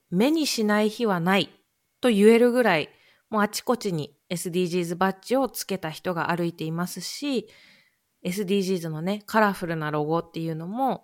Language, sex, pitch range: Japanese, female, 170-235 Hz